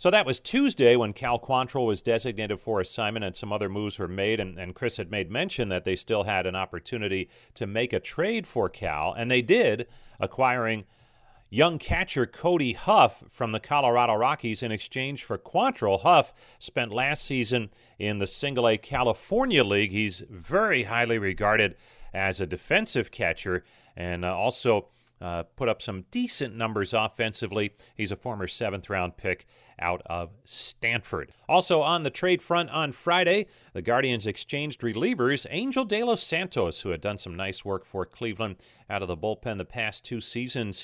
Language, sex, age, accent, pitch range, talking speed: English, male, 40-59, American, 95-125 Hz, 170 wpm